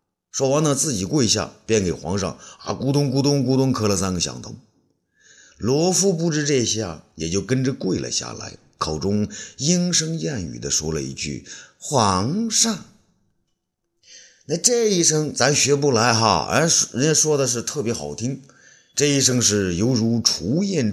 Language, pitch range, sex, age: Chinese, 95-160 Hz, male, 50-69